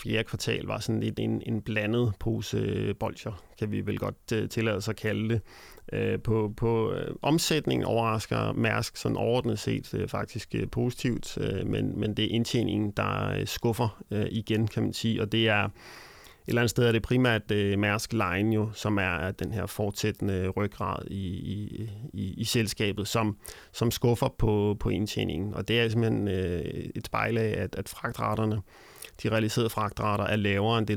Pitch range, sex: 105-115 Hz, male